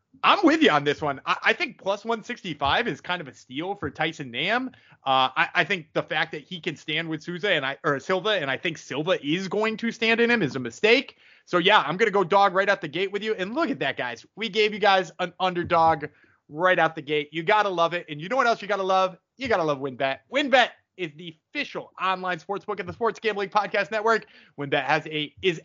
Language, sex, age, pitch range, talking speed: English, male, 30-49, 155-200 Hz, 250 wpm